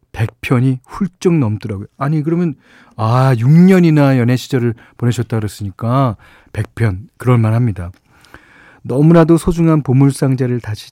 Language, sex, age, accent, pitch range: Korean, male, 40-59, native, 110-150 Hz